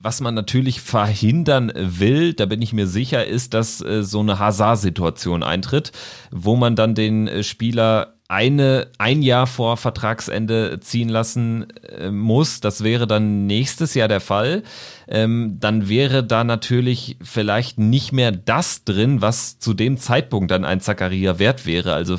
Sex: male